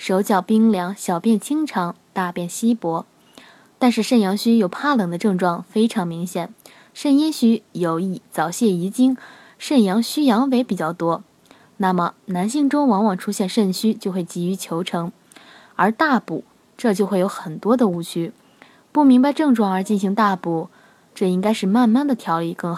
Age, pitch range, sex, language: 20-39, 185-240 Hz, female, Chinese